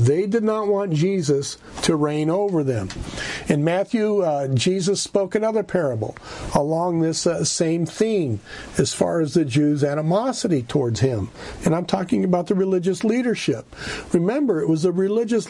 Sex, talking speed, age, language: male, 160 wpm, 50-69, English